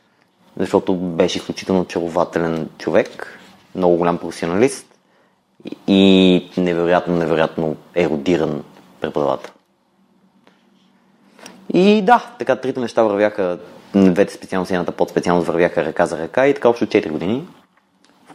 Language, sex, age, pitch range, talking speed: Bulgarian, male, 30-49, 85-110 Hz, 110 wpm